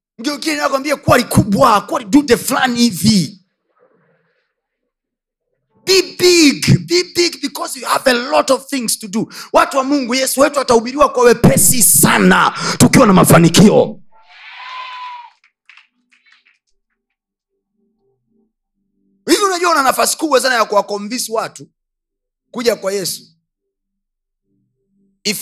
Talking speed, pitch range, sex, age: 115 wpm, 190-270 Hz, male, 30-49